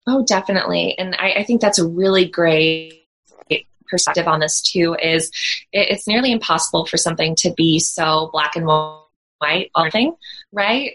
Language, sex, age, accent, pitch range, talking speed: English, female, 20-39, American, 165-190 Hz, 155 wpm